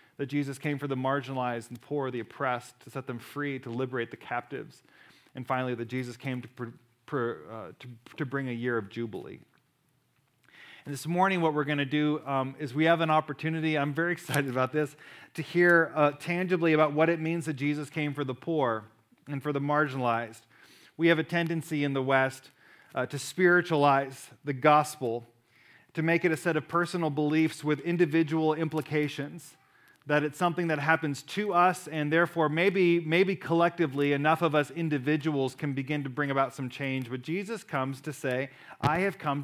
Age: 40-59